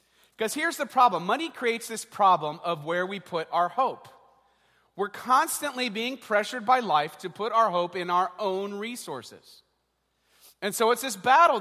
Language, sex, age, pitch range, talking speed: English, male, 30-49, 185-250 Hz, 170 wpm